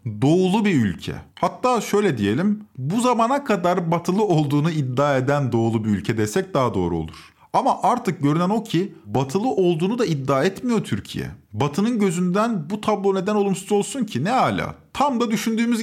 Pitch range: 145-210 Hz